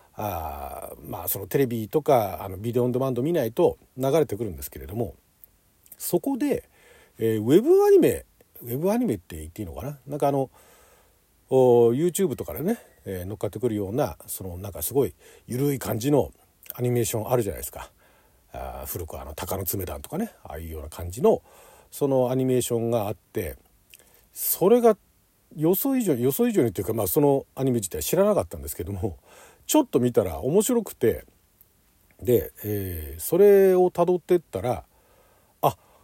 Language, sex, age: Japanese, male, 50-69